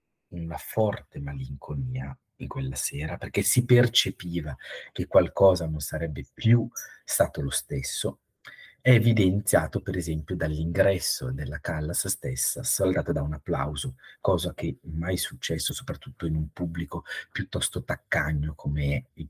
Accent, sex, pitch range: native, male, 80-125 Hz